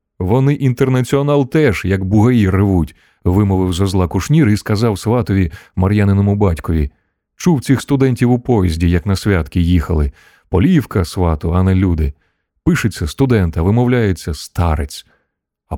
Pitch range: 85-120 Hz